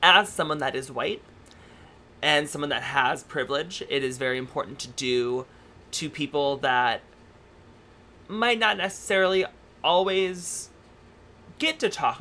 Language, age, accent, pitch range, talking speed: English, 30-49, American, 130-175 Hz, 130 wpm